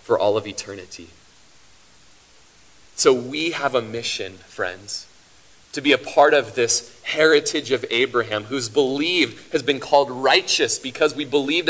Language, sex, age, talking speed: English, male, 30-49, 145 wpm